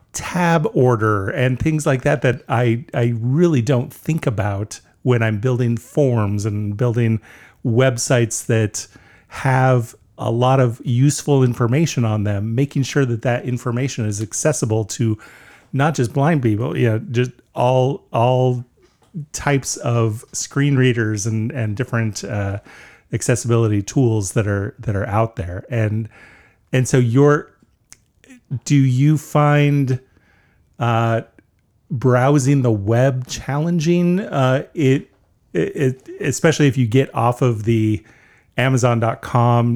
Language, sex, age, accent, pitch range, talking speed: English, male, 40-59, American, 110-135 Hz, 130 wpm